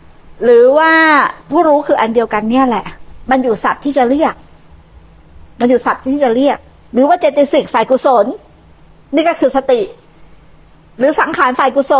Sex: female